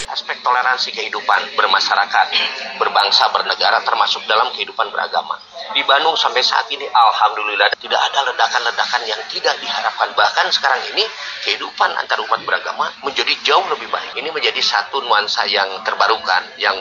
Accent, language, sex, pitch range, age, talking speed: native, Indonesian, male, 170-220 Hz, 30-49, 145 wpm